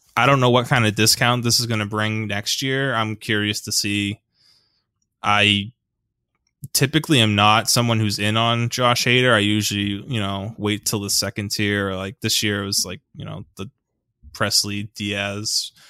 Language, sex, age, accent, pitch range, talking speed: English, male, 20-39, American, 100-115 Hz, 180 wpm